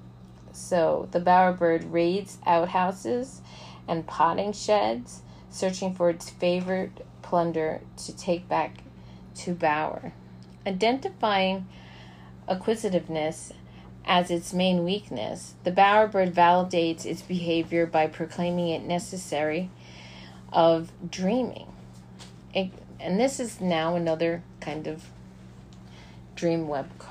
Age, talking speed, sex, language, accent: 40-59, 95 wpm, female, English, American